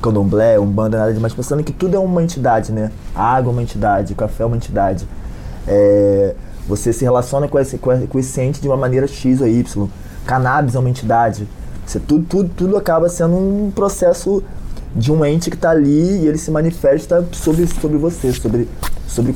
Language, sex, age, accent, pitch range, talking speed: Portuguese, male, 20-39, Brazilian, 115-140 Hz, 195 wpm